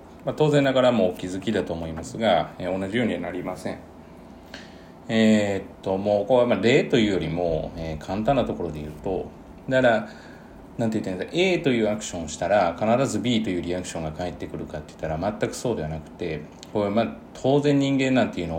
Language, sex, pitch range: Japanese, male, 85-120 Hz